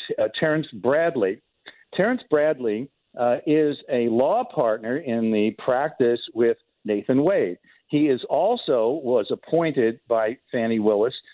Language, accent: English, American